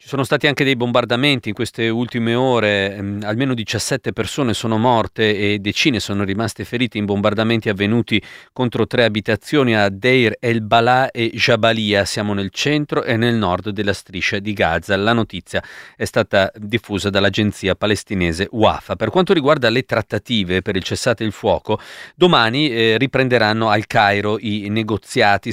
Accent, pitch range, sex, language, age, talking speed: native, 100-125 Hz, male, Italian, 40-59, 155 wpm